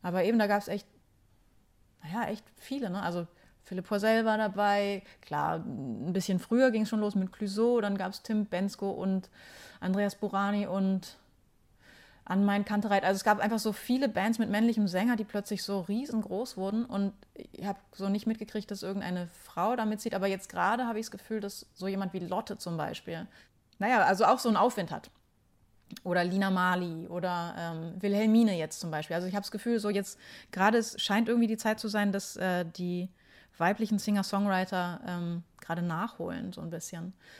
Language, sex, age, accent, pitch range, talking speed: German, female, 30-49, German, 180-215 Hz, 185 wpm